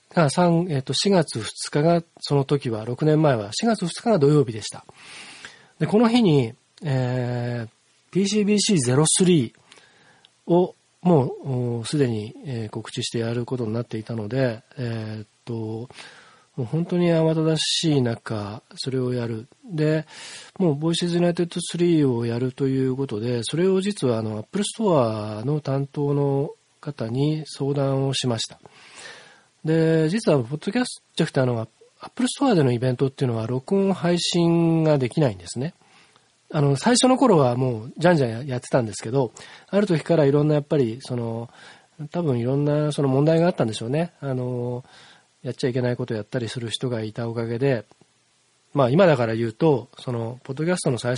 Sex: male